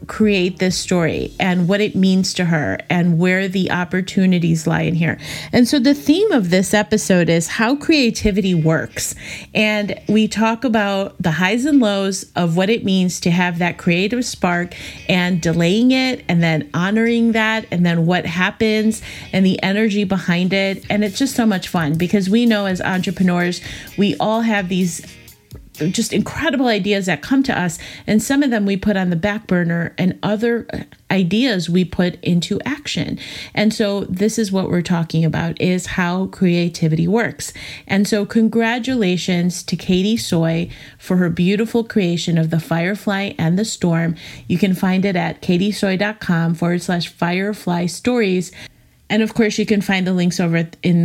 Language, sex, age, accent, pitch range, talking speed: English, female, 30-49, American, 175-210 Hz, 175 wpm